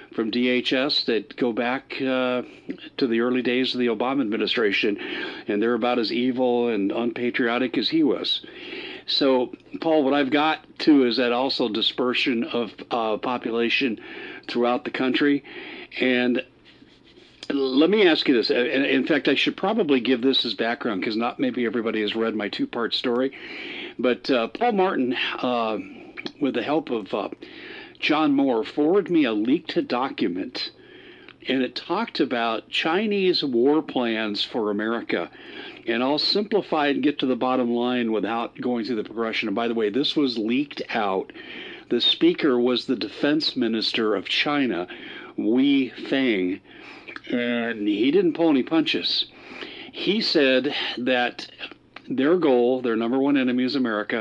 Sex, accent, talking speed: male, American, 155 wpm